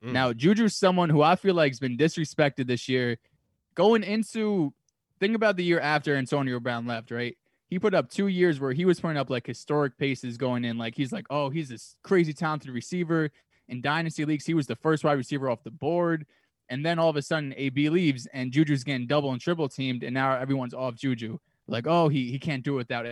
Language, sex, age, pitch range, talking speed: English, male, 20-39, 125-165 Hz, 225 wpm